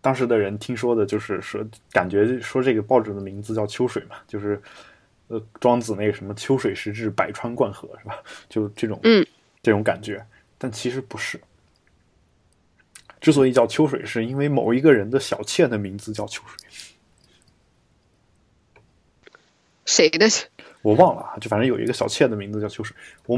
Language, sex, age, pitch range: Chinese, male, 20-39, 105-135 Hz